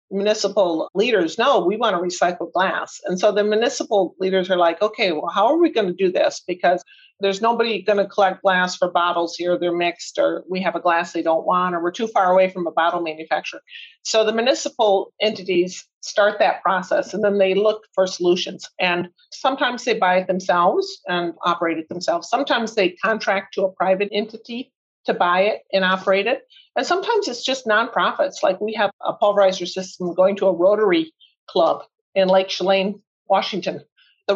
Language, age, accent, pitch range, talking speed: English, 50-69, American, 180-225 Hz, 190 wpm